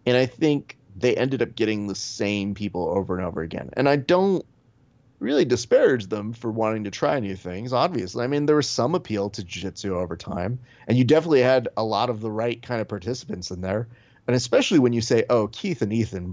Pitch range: 105-130 Hz